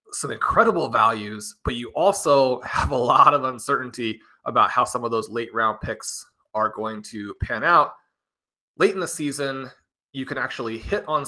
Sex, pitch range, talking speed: male, 115-145 Hz, 175 wpm